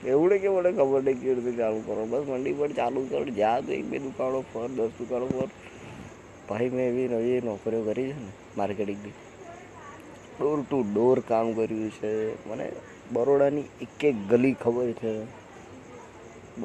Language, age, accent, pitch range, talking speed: Gujarati, 20-39, native, 110-135 Hz, 80 wpm